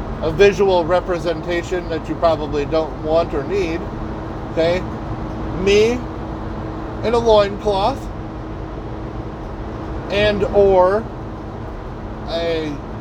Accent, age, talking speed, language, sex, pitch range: American, 30-49, 85 wpm, English, male, 110-170 Hz